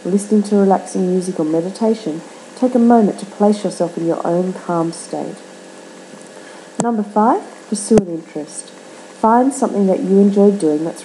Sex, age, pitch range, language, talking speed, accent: female, 40-59, 165-220 Hz, English, 155 wpm, Australian